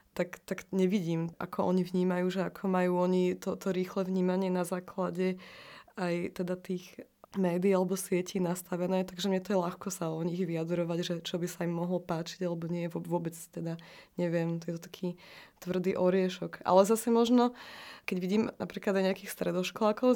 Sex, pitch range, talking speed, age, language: female, 180-200 Hz, 175 wpm, 20-39, Slovak